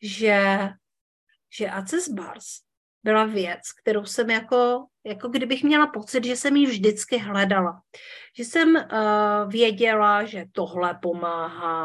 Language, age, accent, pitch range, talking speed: Czech, 40-59, native, 185-240 Hz, 125 wpm